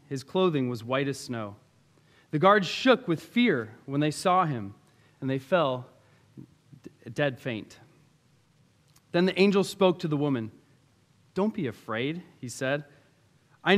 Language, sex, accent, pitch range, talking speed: English, male, American, 130-180 Hz, 145 wpm